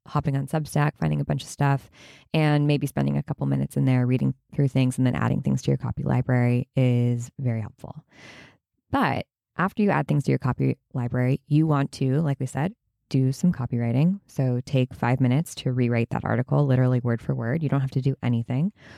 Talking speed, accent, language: 210 wpm, American, English